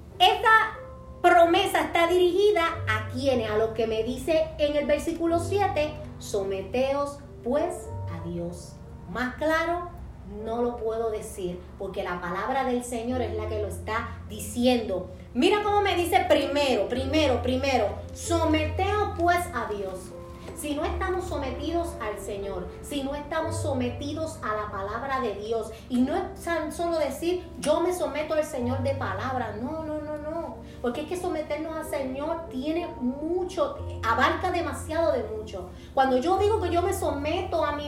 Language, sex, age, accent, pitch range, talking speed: Spanish, female, 30-49, American, 250-345 Hz, 155 wpm